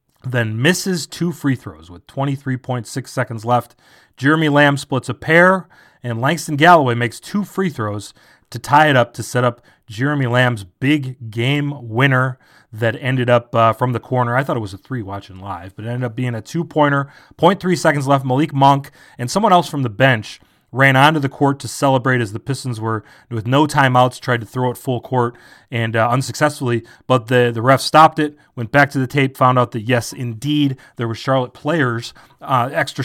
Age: 30-49